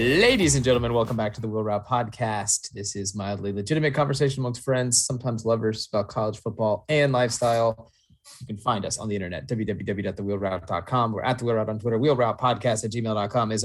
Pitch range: 105-130 Hz